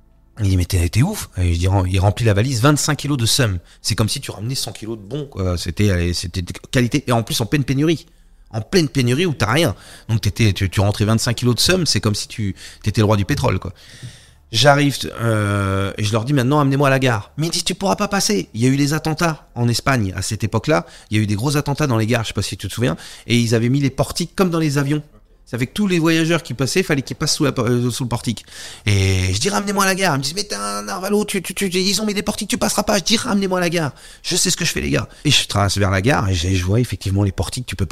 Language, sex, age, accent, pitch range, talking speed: French, male, 30-49, French, 100-150 Hz, 295 wpm